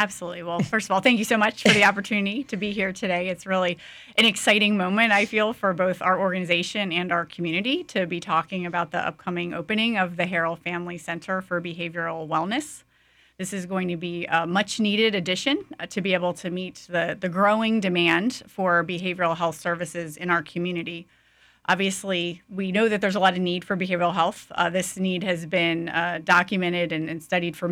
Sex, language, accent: female, English, American